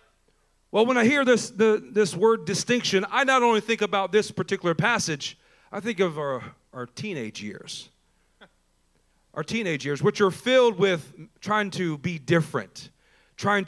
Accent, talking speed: American, 160 wpm